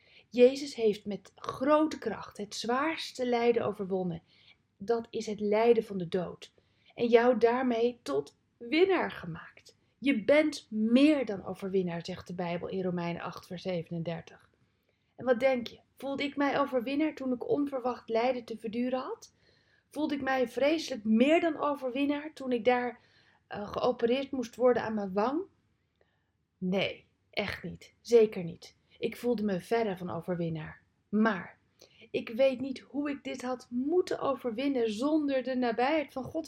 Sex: female